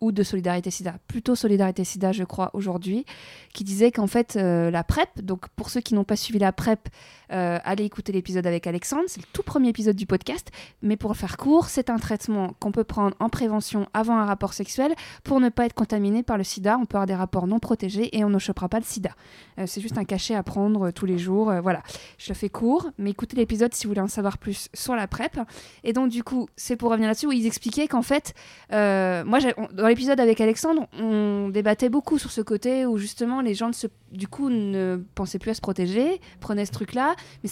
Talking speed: 240 wpm